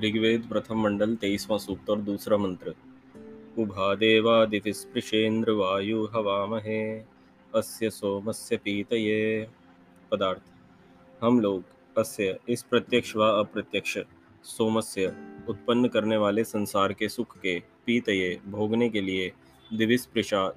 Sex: male